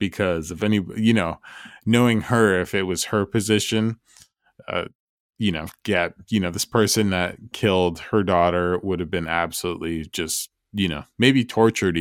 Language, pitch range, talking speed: English, 85-105 Hz, 165 wpm